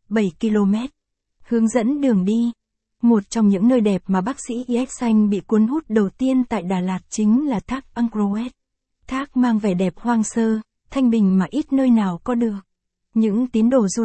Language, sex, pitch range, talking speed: Vietnamese, female, 205-240 Hz, 195 wpm